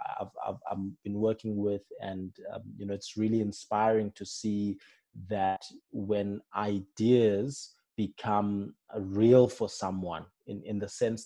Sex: male